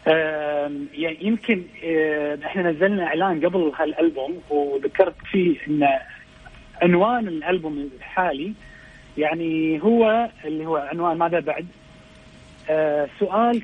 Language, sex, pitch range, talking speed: Arabic, male, 155-195 Hz, 90 wpm